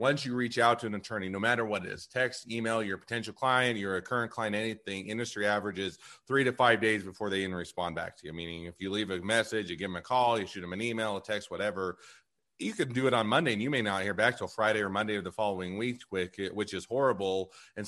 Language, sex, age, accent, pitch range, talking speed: English, male, 30-49, American, 105-130 Hz, 260 wpm